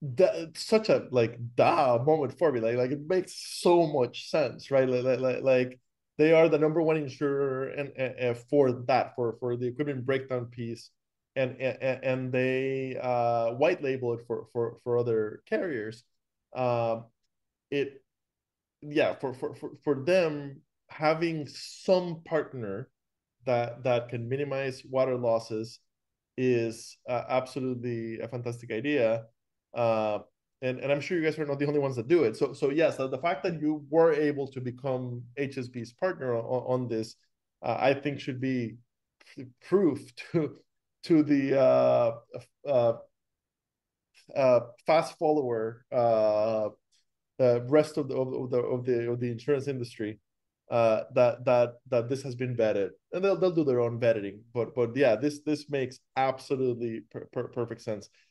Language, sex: English, male